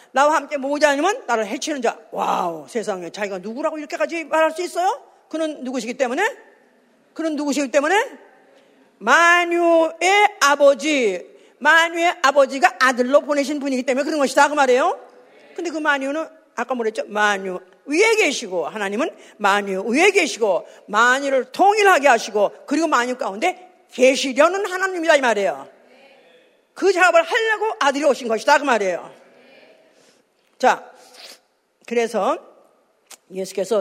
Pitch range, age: 235-335 Hz, 50-69